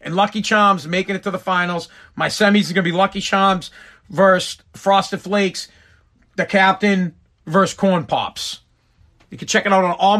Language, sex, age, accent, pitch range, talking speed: English, male, 40-59, American, 110-180 Hz, 180 wpm